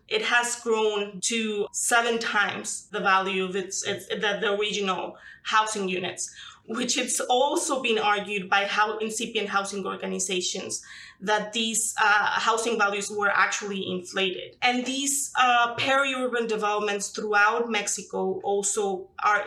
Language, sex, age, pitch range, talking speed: English, female, 20-39, 200-230 Hz, 135 wpm